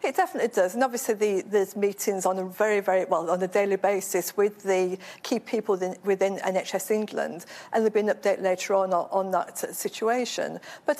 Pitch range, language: 190-230 Hz, English